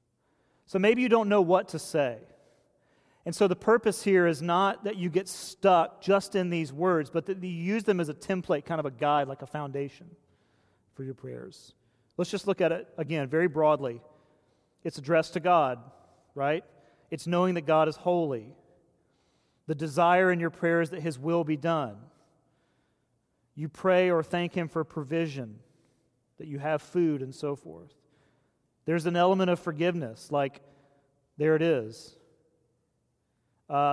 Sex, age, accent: male, 40-59, American